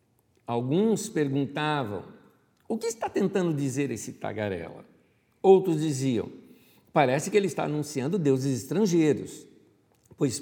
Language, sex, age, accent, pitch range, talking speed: Portuguese, male, 60-79, Brazilian, 110-160 Hz, 110 wpm